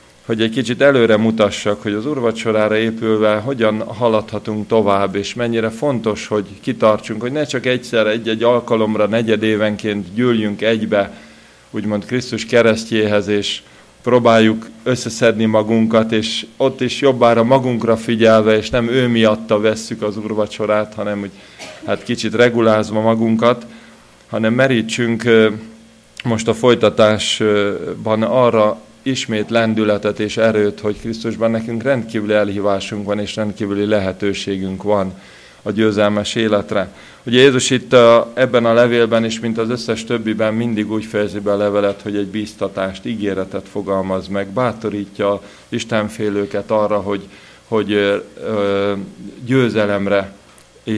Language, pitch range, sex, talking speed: Hungarian, 105-115 Hz, male, 120 wpm